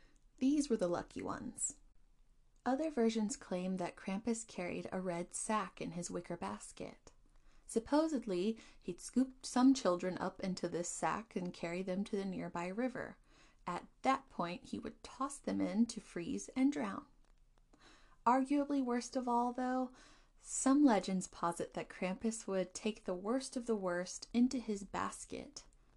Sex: female